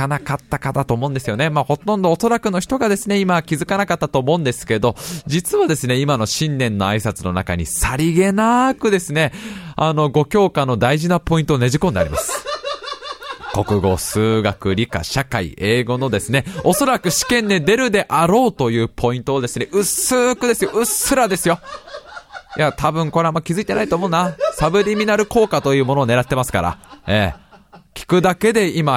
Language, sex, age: Japanese, male, 20-39